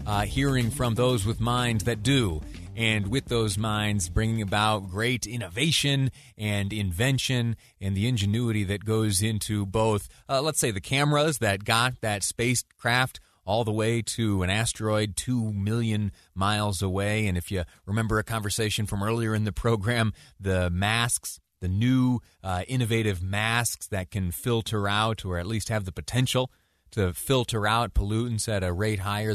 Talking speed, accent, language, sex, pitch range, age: 165 wpm, American, English, male, 95-115 Hz, 30-49